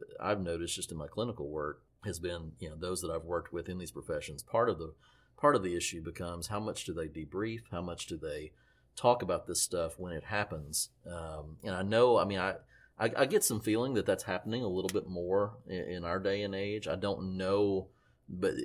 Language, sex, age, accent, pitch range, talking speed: English, male, 40-59, American, 85-100 Hz, 230 wpm